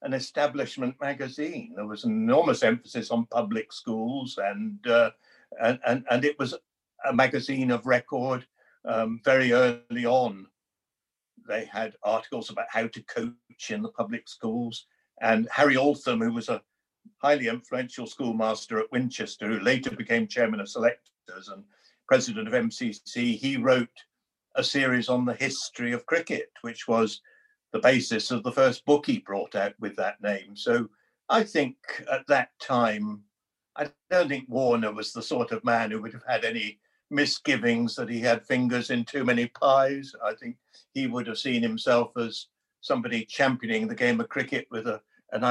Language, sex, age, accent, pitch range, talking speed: English, male, 60-79, British, 120-145 Hz, 165 wpm